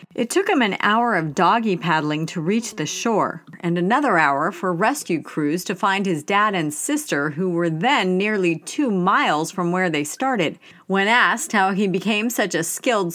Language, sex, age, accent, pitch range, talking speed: English, female, 40-59, American, 170-240 Hz, 190 wpm